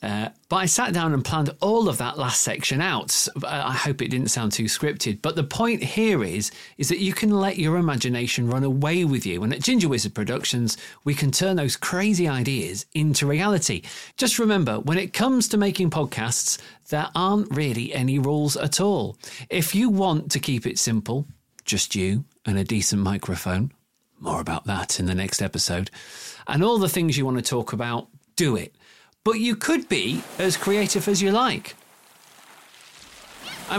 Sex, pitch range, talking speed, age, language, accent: male, 120-190 Hz, 190 wpm, 40-59, English, British